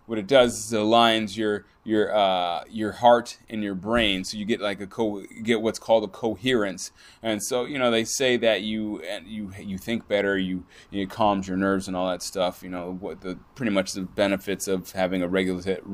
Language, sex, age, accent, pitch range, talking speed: English, male, 20-39, American, 100-120 Hz, 220 wpm